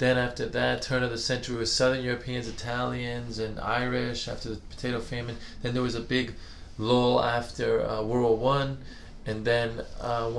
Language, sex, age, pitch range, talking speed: English, male, 20-39, 110-130 Hz, 180 wpm